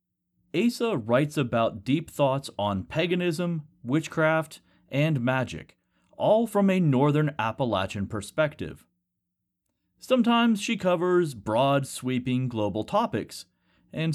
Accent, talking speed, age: American, 100 wpm, 30-49